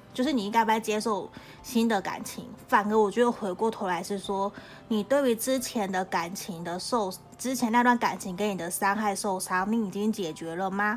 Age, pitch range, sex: 20-39, 190-235 Hz, female